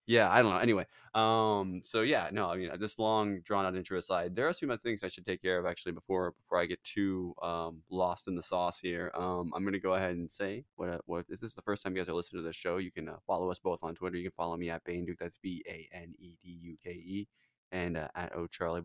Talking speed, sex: 265 wpm, male